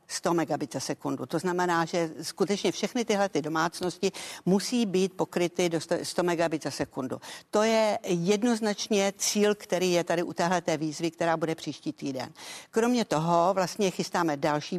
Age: 50-69